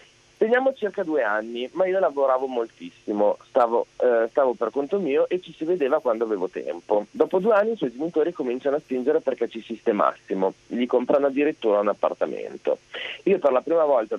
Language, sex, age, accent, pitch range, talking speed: Italian, male, 30-49, native, 120-200 Hz, 180 wpm